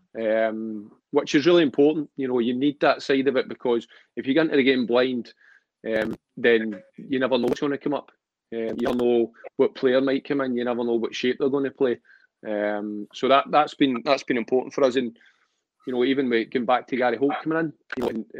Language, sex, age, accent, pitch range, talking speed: English, male, 30-49, British, 120-135 Hz, 225 wpm